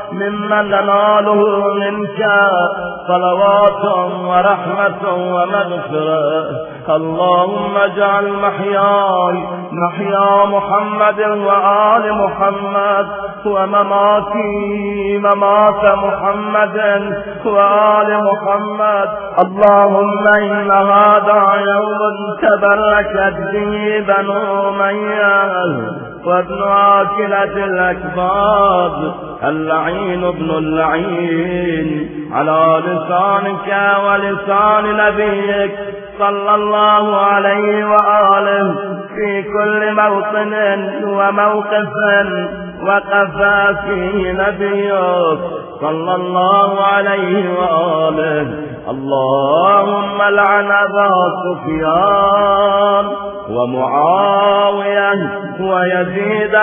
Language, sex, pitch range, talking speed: Persian, male, 180-205 Hz, 60 wpm